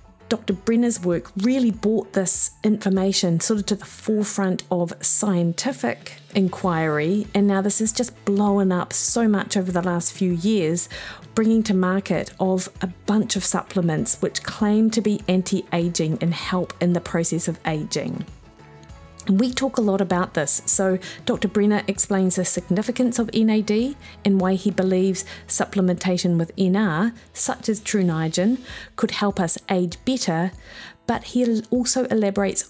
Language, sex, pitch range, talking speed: English, female, 170-205 Hz, 150 wpm